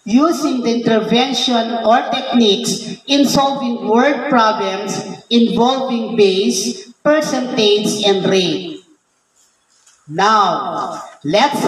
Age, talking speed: 40-59, 80 wpm